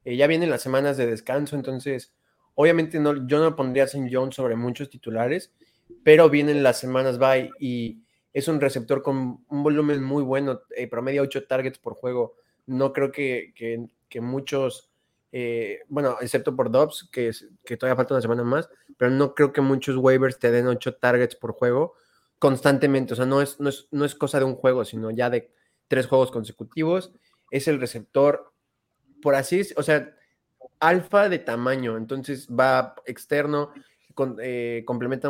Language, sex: Spanish, male